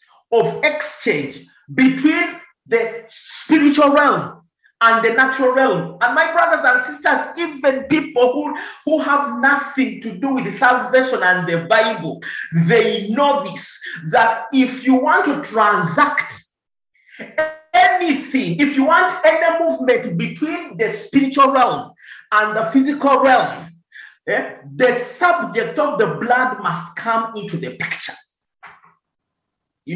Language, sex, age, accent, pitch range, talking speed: English, male, 50-69, Nigerian, 220-300 Hz, 125 wpm